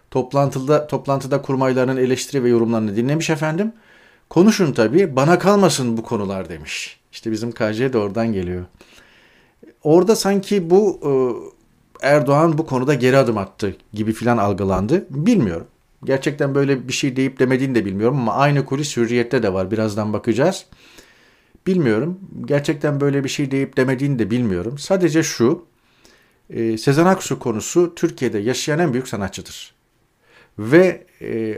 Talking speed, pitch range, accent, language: 135 wpm, 115-150 Hz, native, Turkish